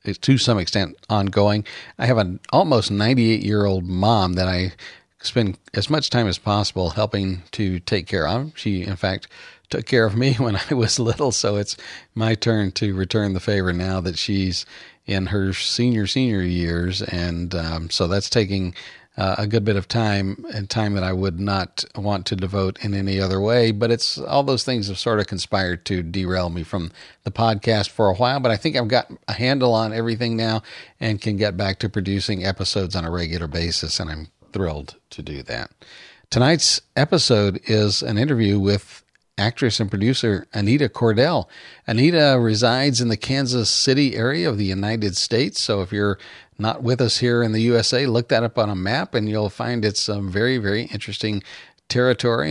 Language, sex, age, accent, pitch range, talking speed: English, male, 40-59, American, 95-120 Hz, 190 wpm